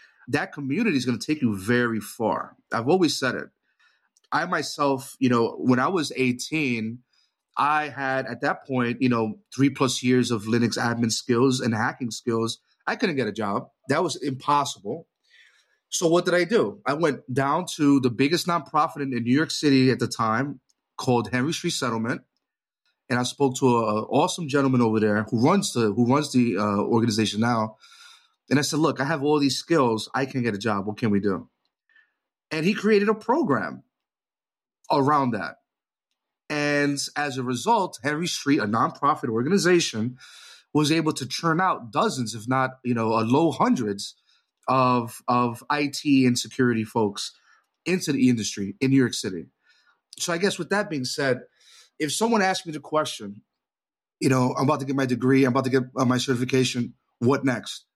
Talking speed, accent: 180 wpm, American